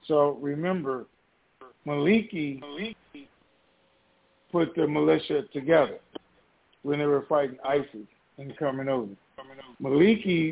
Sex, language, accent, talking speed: male, English, American, 90 wpm